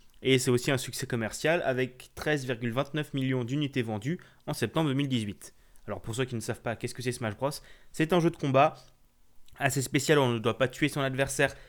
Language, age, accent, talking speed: French, 20-39, French, 205 wpm